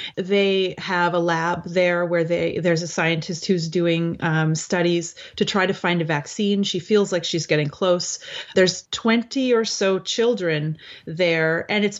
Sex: female